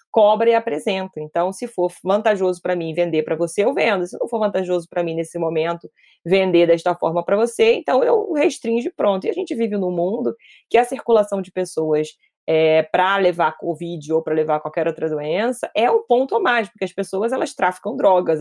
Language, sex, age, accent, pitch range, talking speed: Portuguese, female, 20-39, Brazilian, 170-215 Hz, 210 wpm